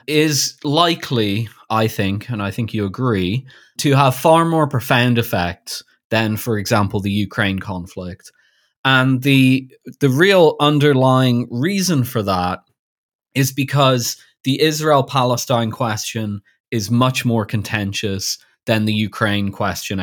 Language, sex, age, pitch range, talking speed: English, male, 20-39, 105-130 Hz, 125 wpm